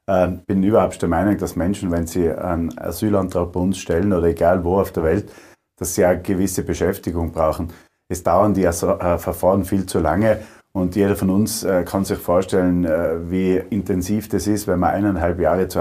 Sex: male